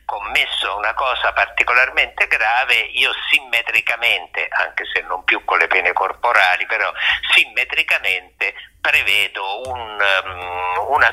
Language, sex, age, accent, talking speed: Italian, male, 50-69, native, 100 wpm